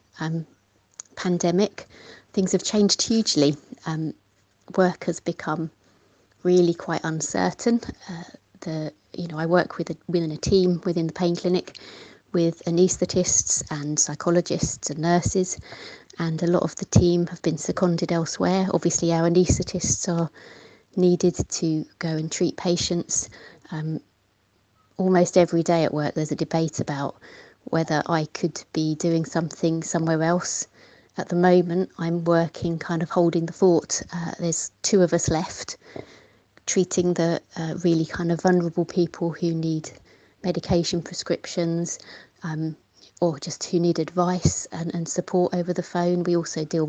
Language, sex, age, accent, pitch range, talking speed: English, female, 30-49, British, 160-180 Hz, 145 wpm